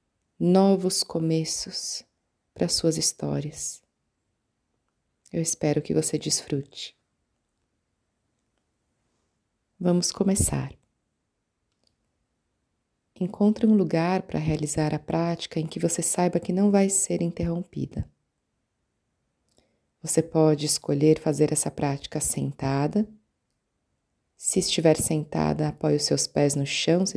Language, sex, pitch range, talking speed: Portuguese, female, 150-180 Hz, 100 wpm